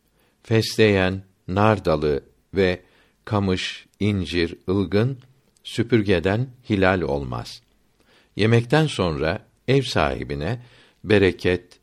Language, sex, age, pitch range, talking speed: Turkish, male, 60-79, 90-120 Hz, 70 wpm